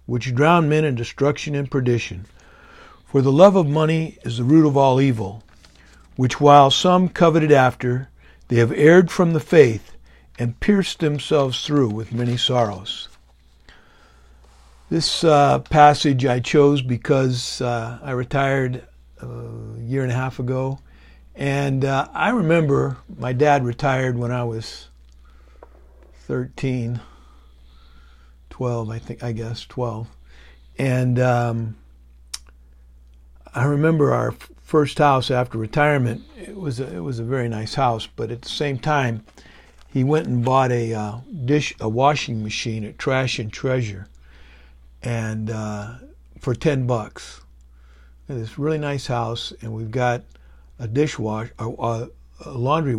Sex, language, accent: male, English, American